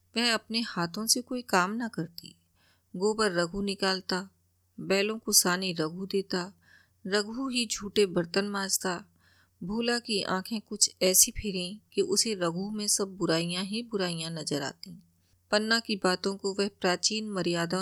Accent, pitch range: native, 180-220 Hz